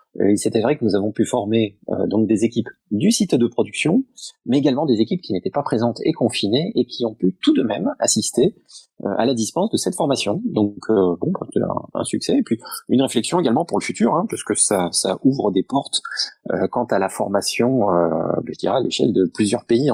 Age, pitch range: 30-49, 100-130 Hz